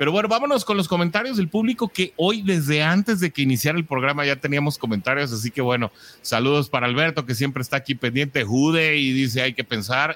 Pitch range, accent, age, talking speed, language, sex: 120-155 Hz, Mexican, 30-49, 220 wpm, English, male